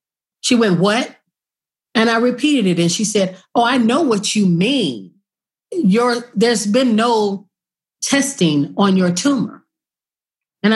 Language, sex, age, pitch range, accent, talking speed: English, female, 40-59, 180-230 Hz, American, 135 wpm